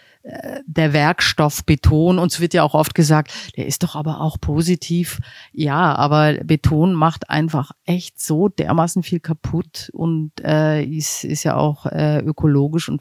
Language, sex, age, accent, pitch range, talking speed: German, female, 40-59, German, 135-155 Hz, 160 wpm